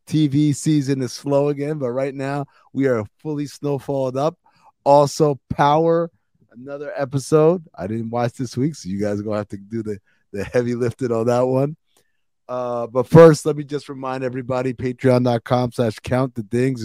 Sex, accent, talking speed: male, American, 180 wpm